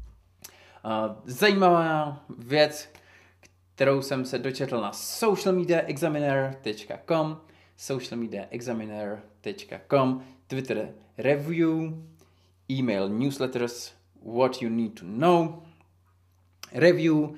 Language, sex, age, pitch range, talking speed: Czech, male, 20-39, 100-130 Hz, 70 wpm